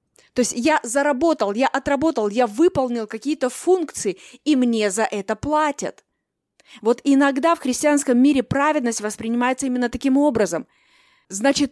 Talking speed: 135 wpm